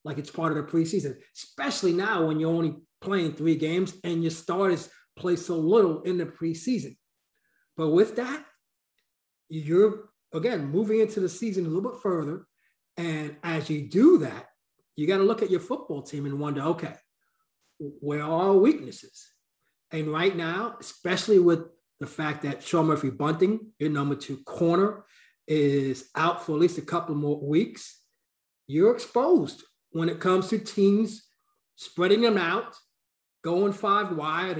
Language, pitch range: English, 160-210 Hz